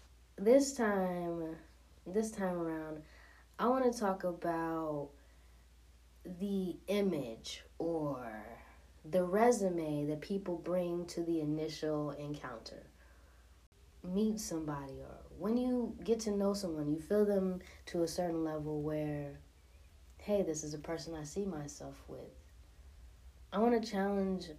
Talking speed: 125 wpm